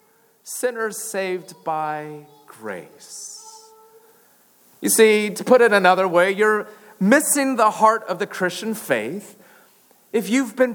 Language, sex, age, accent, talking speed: English, male, 30-49, American, 125 wpm